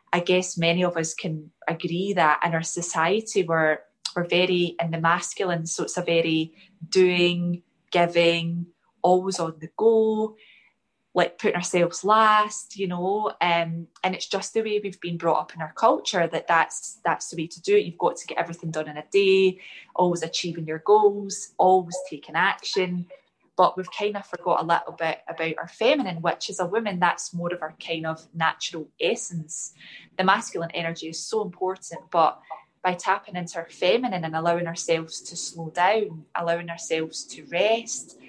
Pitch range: 165-195 Hz